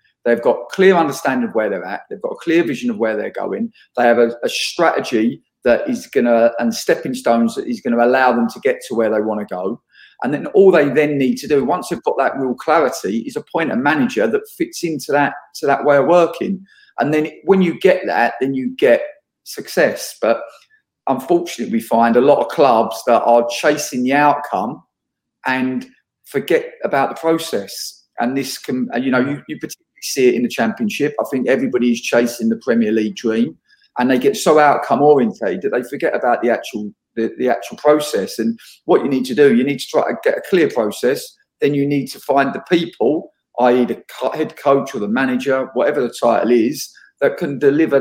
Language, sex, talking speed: English, male, 215 wpm